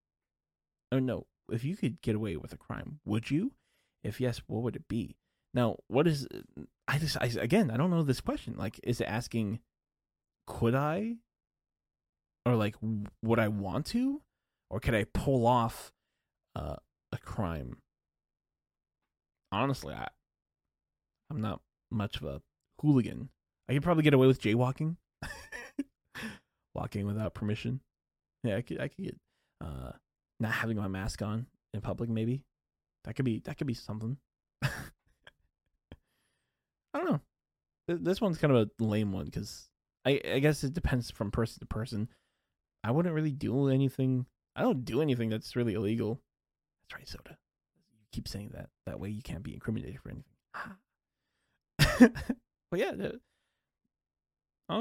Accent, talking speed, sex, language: American, 155 wpm, male, English